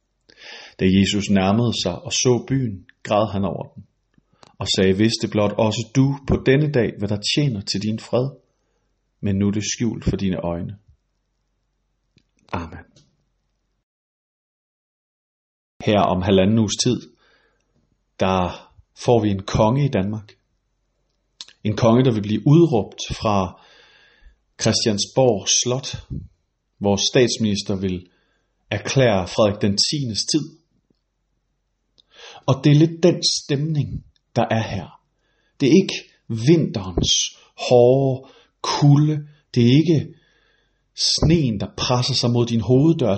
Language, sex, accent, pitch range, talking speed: Danish, male, native, 105-140 Hz, 125 wpm